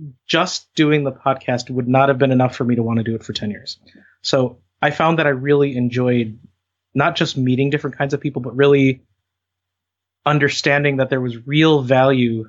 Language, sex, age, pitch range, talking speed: English, male, 20-39, 115-140 Hz, 195 wpm